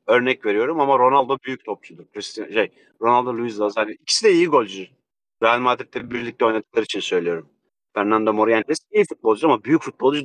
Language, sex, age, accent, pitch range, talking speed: Turkish, male, 40-59, native, 115-165 Hz, 165 wpm